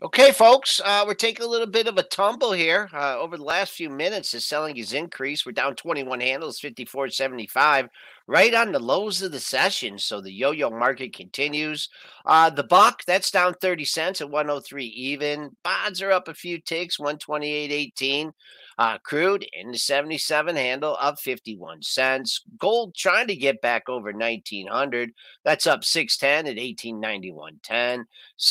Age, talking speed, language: 50-69, 160 wpm, English